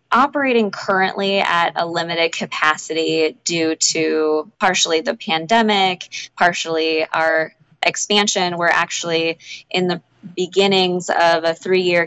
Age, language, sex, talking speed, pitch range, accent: 20-39, English, female, 110 wpm, 160-190 Hz, American